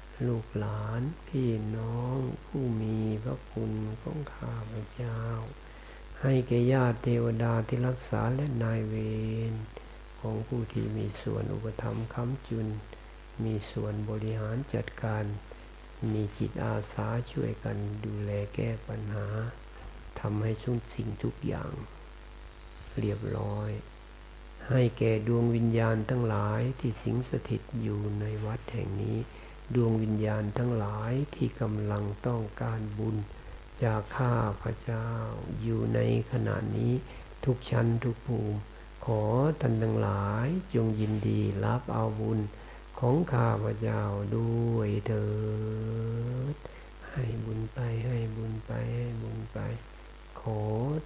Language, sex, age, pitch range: Thai, male, 60-79, 110-120 Hz